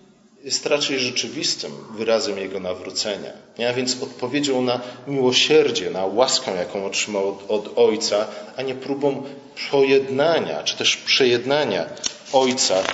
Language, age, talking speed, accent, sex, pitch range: Polish, 40-59, 120 wpm, native, male, 115-140 Hz